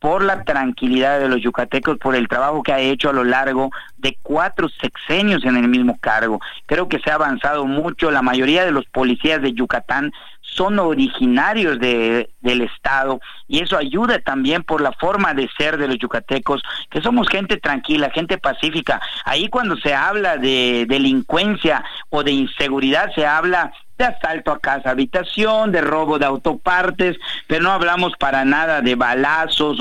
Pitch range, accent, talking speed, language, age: 125-160 Hz, Mexican, 170 wpm, Spanish, 50-69